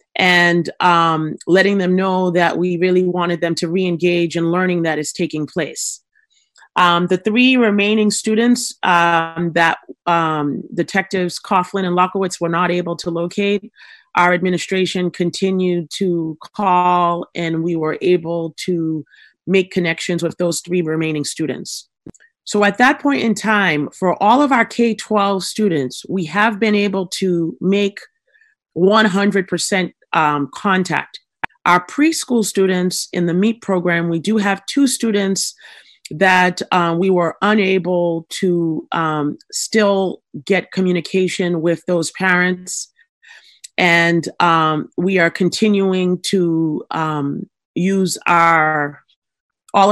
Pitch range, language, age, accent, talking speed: 170-200 Hz, English, 30-49, American, 130 wpm